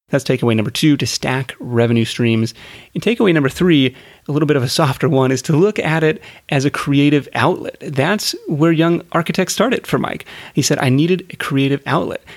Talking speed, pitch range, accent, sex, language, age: 205 wpm, 130-170 Hz, American, male, English, 30-49